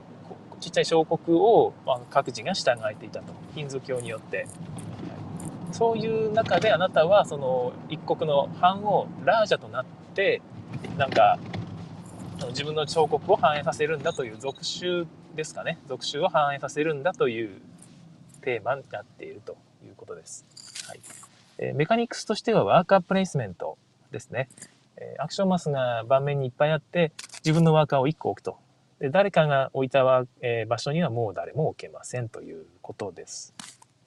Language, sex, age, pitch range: Japanese, male, 20-39, 130-185 Hz